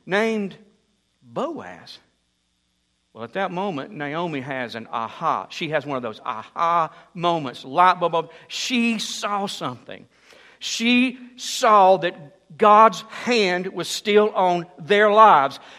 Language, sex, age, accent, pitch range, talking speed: English, male, 60-79, American, 165-225 Hz, 115 wpm